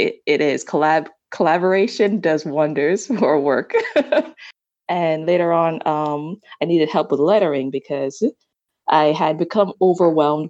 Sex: female